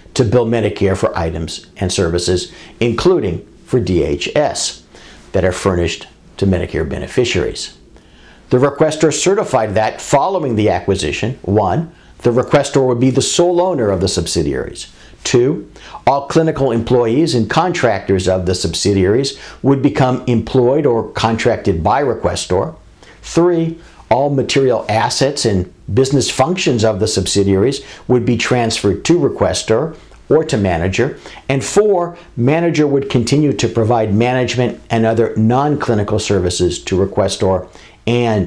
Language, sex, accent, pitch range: English, male, American, 95-135 Hz